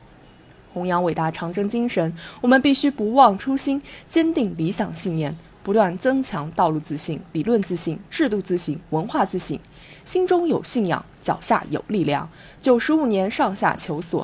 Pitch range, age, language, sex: 165-250 Hz, 20-39, Chinese, female